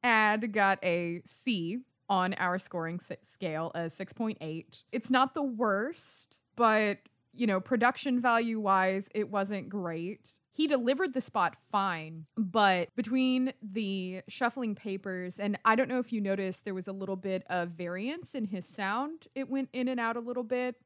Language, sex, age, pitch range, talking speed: English, female, 20-39, 180-230 Hz, 165 wpm